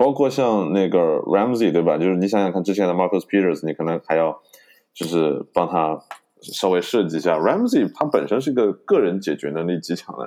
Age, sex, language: 20-39, male, Chinese